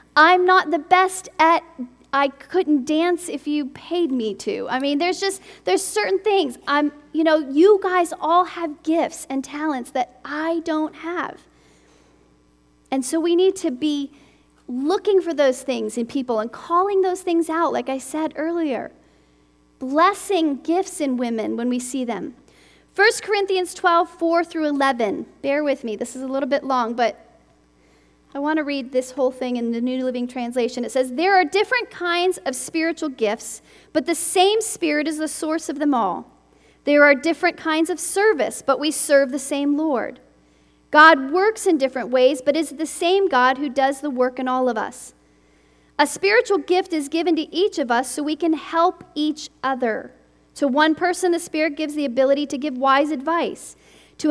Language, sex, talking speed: English, female, 185 wpm